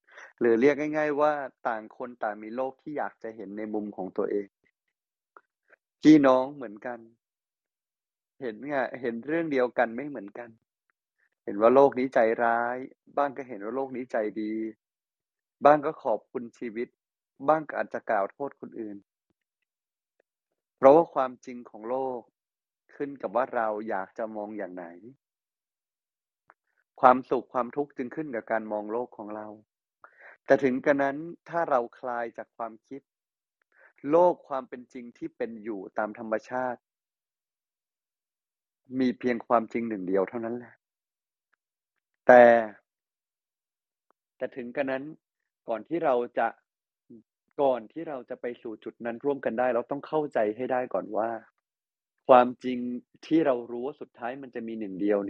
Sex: male